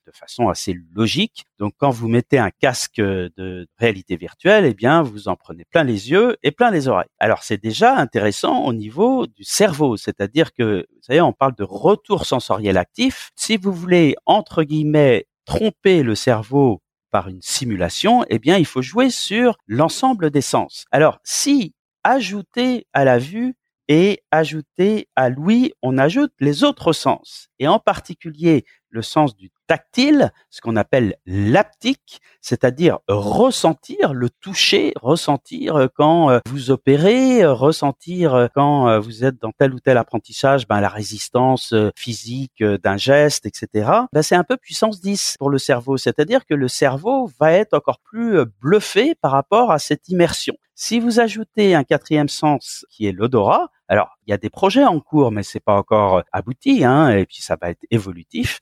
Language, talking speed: French, 170 wpm